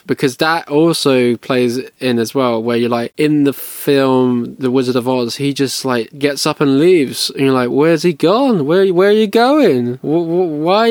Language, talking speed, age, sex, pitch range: English, 200 wpm, 20-39, male, 125-160 Hz